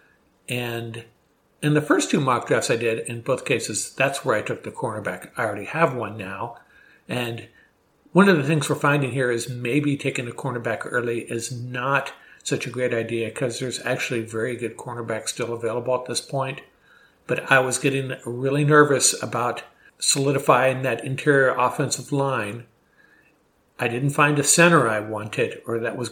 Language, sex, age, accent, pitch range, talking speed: English, male, 50-69, American, 115-140 Hz, 175 wpm